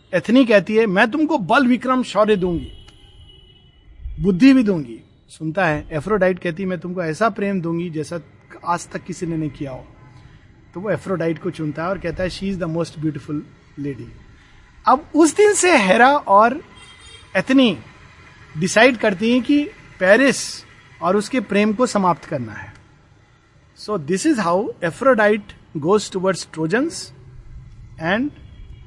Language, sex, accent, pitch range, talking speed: Hindi, male, native, 155-220 Hz, 150 wpm